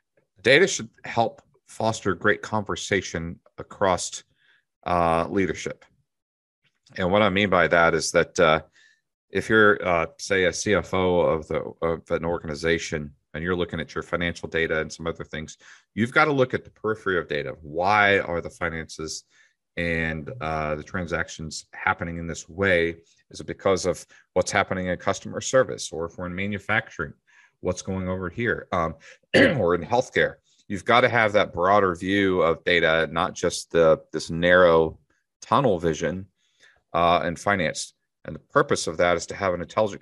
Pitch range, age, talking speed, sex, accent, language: 80-95 Hz, 40-59, 165 wpm, male, American, English